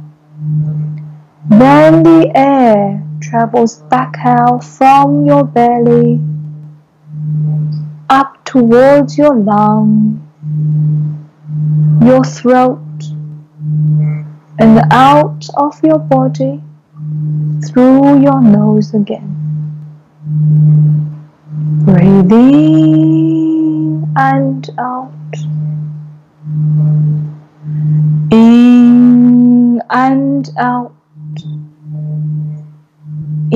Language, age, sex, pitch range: Chinese, 20-39, female, 150-220 Hz